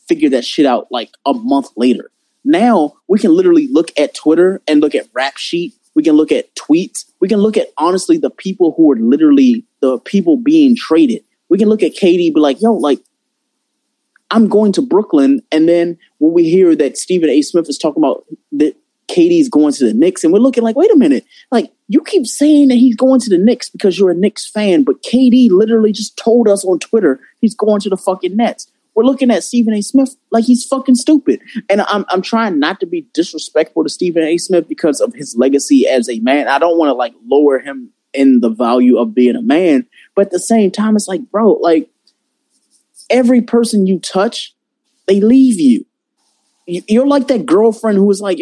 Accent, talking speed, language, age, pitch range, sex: American, 215 wpm, English, 20-39, 190-280 Hz, male